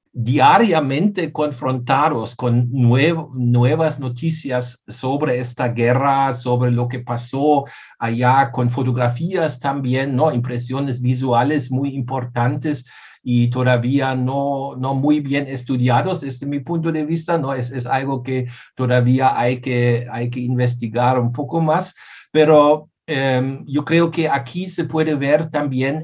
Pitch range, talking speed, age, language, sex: 125-145 Hz, 135 wpm, 60-79, Spanish, male